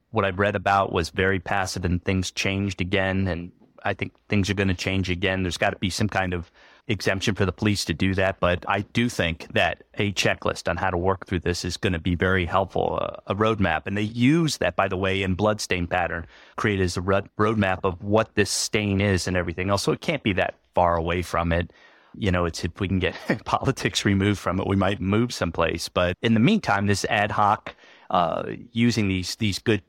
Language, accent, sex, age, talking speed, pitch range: English, American, male, 30-49, 225 wpm, 95-110 Hz